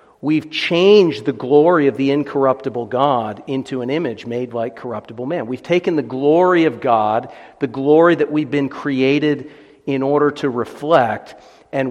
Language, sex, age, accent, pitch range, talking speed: English, male, 50-69, American, 115-140 Hz, 160 wpm